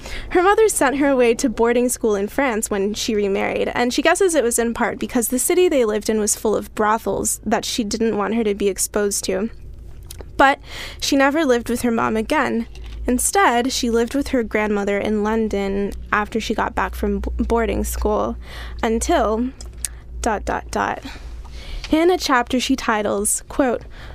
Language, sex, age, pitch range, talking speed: English, female, 10-29, 215-260 Hz, 170 wpm